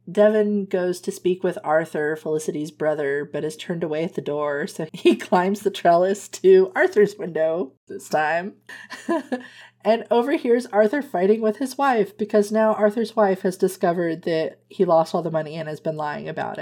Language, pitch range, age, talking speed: English, 160-210 Hz, 30-49, 175 wpm